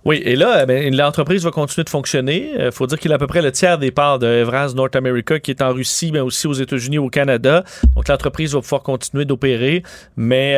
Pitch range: 135-185 Hz